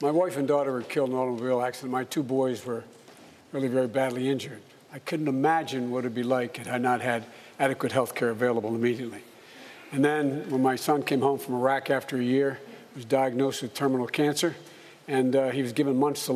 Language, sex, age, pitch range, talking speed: English, male, 60-79, 130-165 Hz, 220 wpm